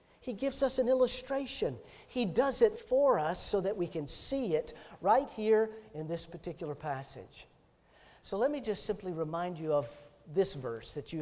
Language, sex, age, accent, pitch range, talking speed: English, male, 50-69, American, 145-195 Hz, 180 wpm